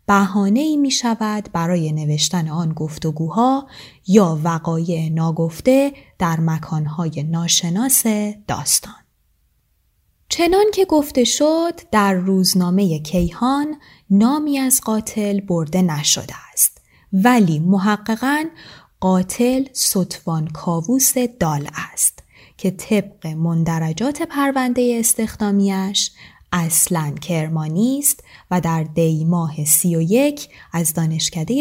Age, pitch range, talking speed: 20-39, 165-240 Hz, 95 wpm